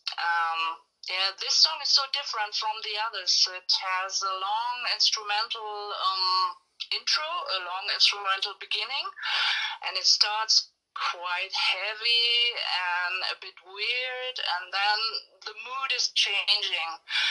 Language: English